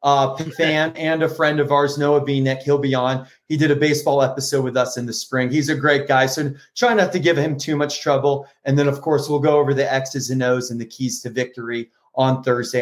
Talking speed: 255 wpm